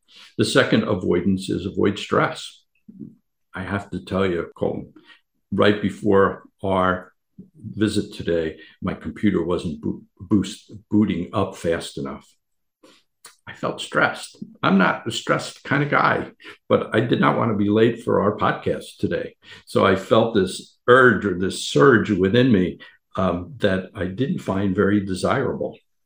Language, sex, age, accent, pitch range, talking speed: English, male, 60-79, American, 90-105 Hz, 145 wpm